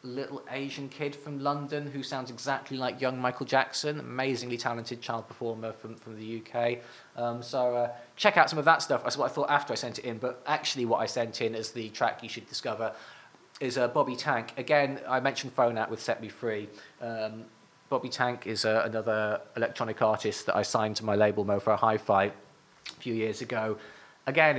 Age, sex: 20-39, male